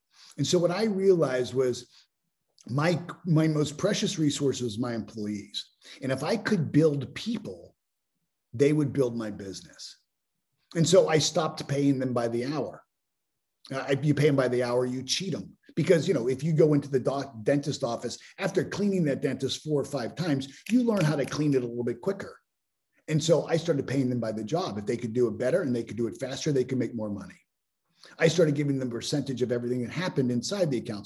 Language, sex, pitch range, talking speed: English, male, 125-165 Hz, 215 wpm